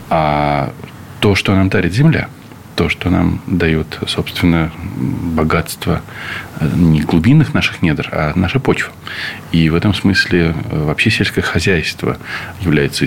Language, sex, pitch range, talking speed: Russian, male, 80-105 Hz, 125 wpm